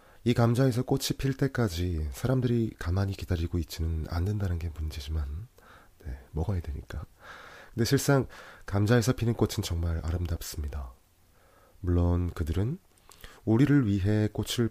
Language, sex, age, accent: English, male, 30-49, Korean